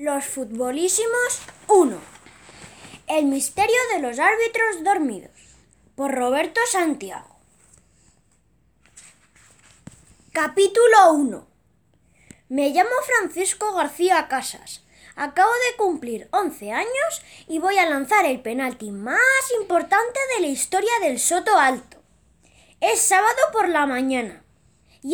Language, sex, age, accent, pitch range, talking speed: Spanish, female, 20-39, Spanish, 265-405 Hz, 105 wpm